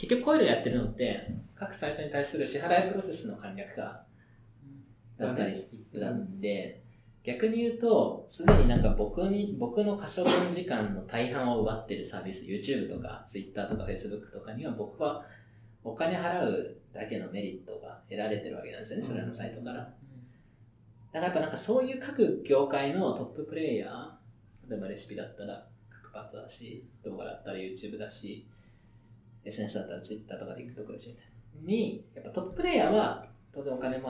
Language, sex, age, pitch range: Japanese, male, 20-39, 110-140 Hz